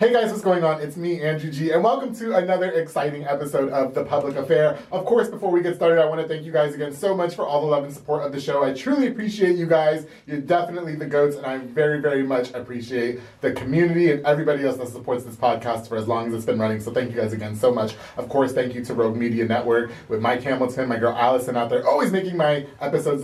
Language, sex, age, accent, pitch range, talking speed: English, male, 30-49, American, 125-175 Hz, 260 wpm